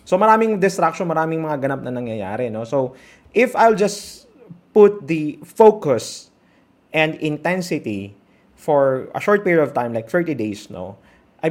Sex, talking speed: male, 150 wpm